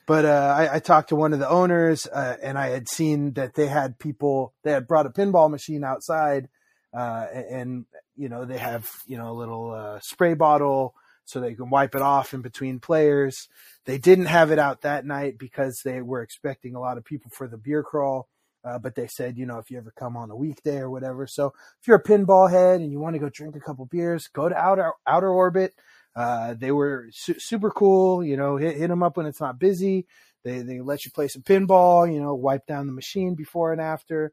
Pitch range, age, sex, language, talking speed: 130-160 Hz, 20-39, male, English, 235 wpm